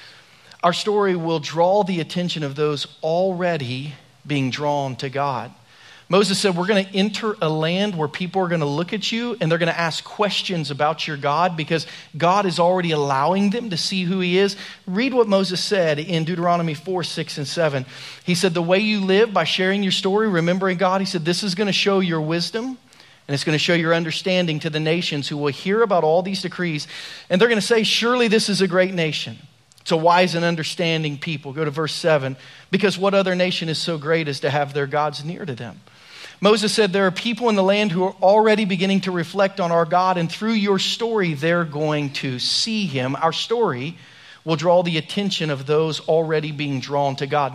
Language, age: English, 40-59